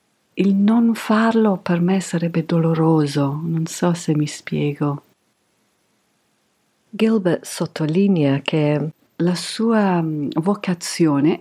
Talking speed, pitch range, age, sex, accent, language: 95 wpm, 145-195 Hz, 50-69, female, native, Italian